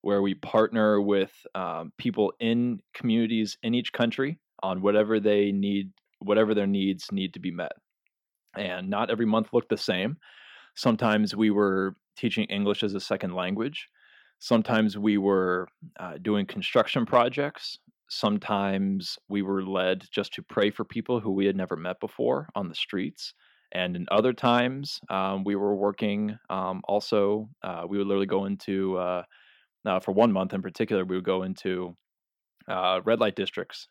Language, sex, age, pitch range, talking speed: English, male, 20-39, 95-110 Hz, 170 wpm